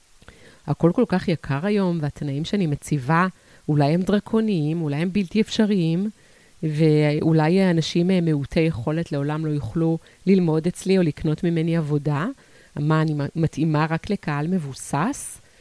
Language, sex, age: Hebrew, female, 30-49